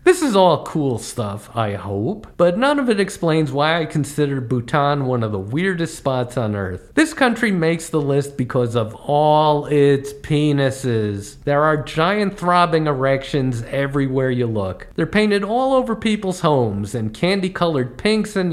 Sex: male